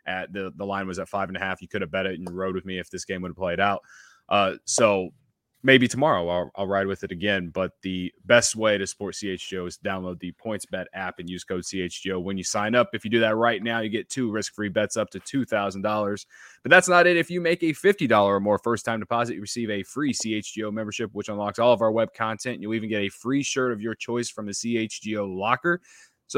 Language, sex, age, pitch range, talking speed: English, male, 20-39, 100-125 Hz, 260 wpm